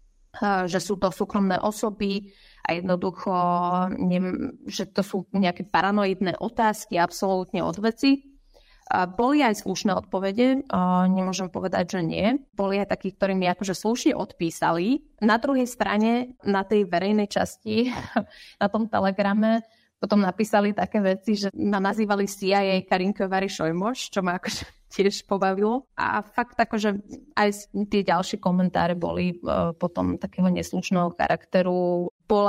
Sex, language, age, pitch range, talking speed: female, Slovak, 20-39, 180-215 Hz, 135 wpm